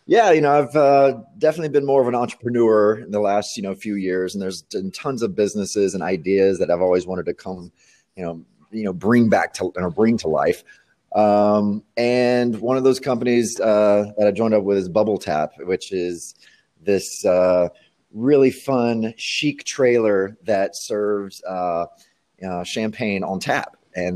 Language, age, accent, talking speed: English, 30-49, American, 185 wpm